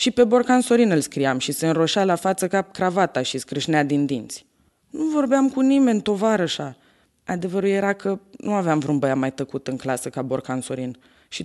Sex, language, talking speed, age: female, Romanian, 185 wpm, 20-39